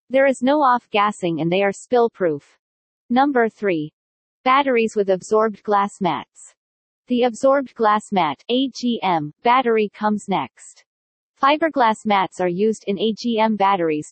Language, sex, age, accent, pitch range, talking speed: English, female, 40-59, American, 190-245 Hz, 135 wpm